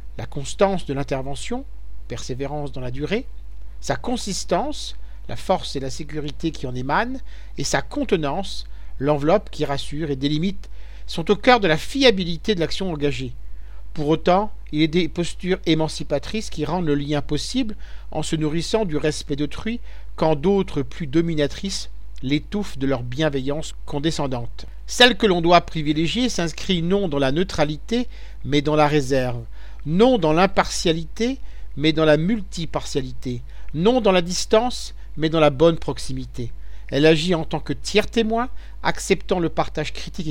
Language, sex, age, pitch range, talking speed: French, male, 50-69, 140-185 Hz, 155 wpm